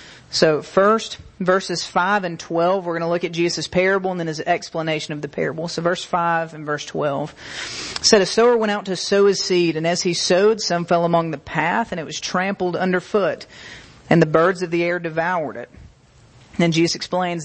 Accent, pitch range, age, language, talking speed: American, 170-200 Hz, 40-59, English, 205 wpm